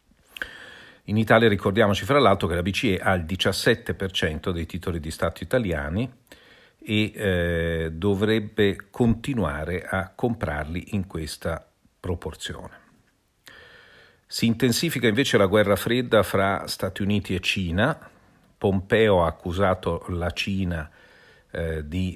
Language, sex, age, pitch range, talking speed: Italian, male, 50-69, 85-110 Hz, 115 wpm